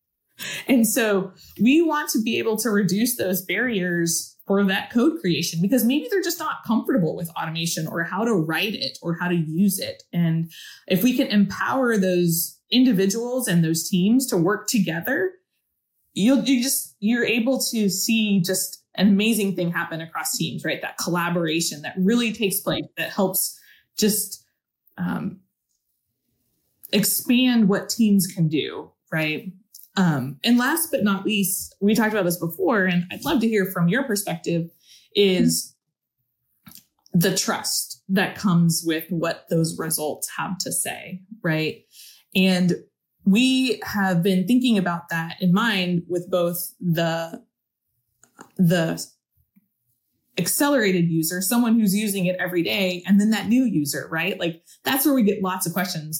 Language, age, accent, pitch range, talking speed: English, 20-39, American, 170-225 Hz, 155 wpm